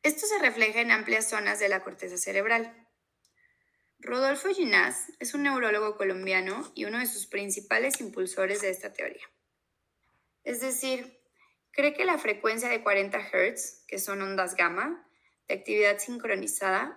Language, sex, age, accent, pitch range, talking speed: Spanish, female, 20-39, Mexican, 200-285 Hz, 145 wpm